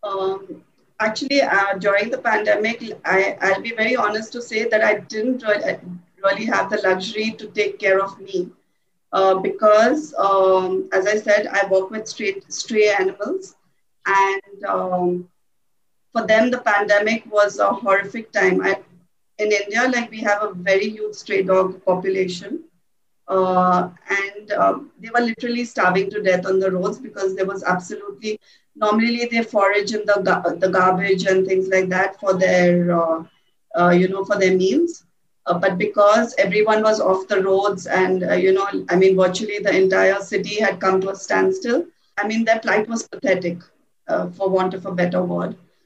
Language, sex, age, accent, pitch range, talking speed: English, female, 30-49, Indian, 185-215 Hz, 170 wpm